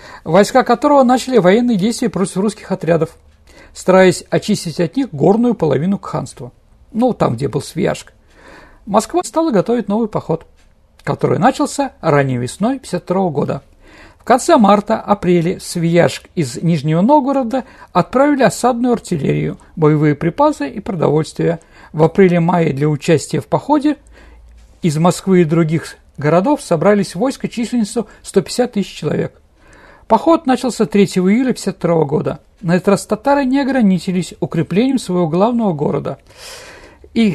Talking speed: 130 wpm